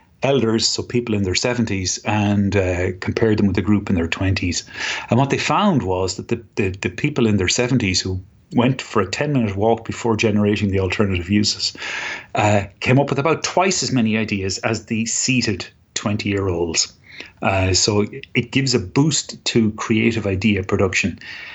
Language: English